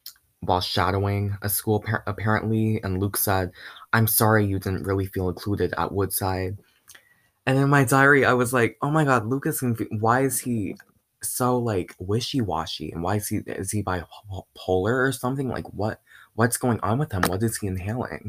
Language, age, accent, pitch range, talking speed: English, 20-39, American, 95-125 Hz, 175 wpm